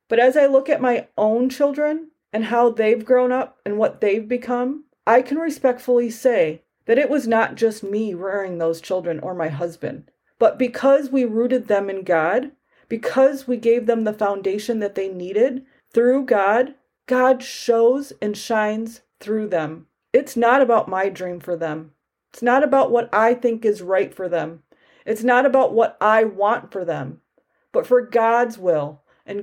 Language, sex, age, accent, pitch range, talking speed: English, female, 40-59, American, 195-255 Hz, 175 wpm